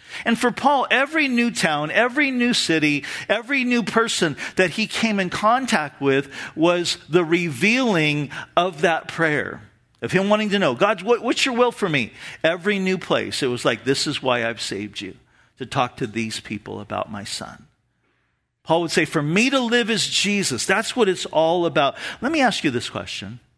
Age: 50-69